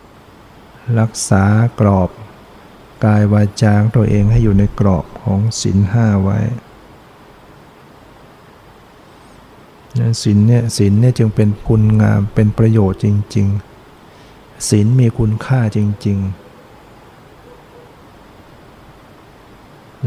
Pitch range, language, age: 105-115 Hz, Thai, 60-79